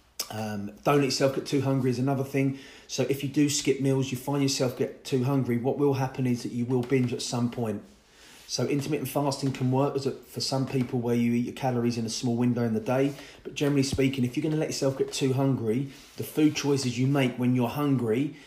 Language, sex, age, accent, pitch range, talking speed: English, male, 30-49, British, 120-140 Hz, 245 wpm